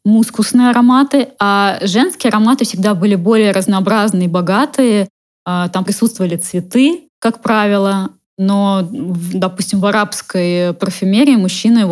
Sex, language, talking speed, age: female, Russian, 105 wpm, 20-39